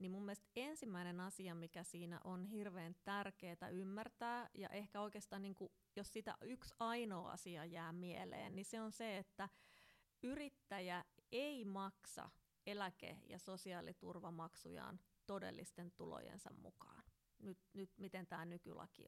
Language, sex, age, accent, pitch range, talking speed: Finnish, female, 30-49, native, 180-215 Hz, 125 wpm